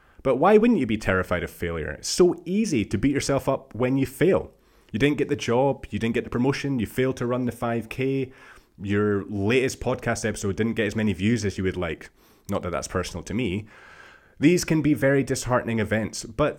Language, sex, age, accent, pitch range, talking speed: English, male, 30-49, British, 105-140 Hz, 215 wpm